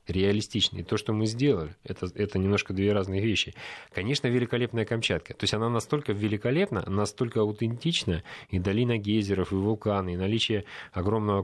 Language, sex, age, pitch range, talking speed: Russian, male, 30-49, 95-115 Hz, 150 wpm